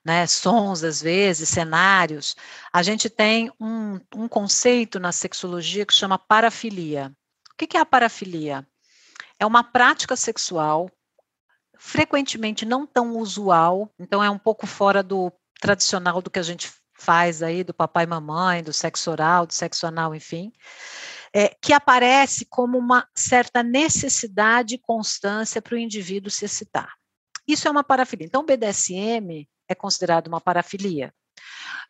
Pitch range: 175-255 Hz